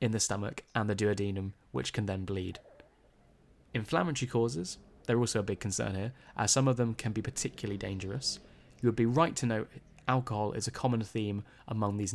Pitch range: 105-130 Hz